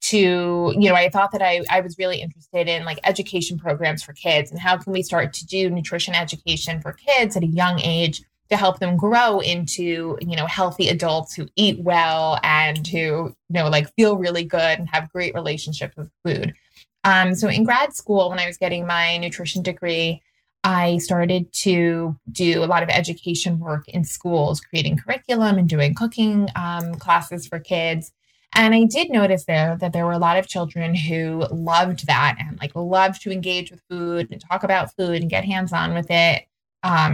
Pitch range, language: 165-185 Hz, English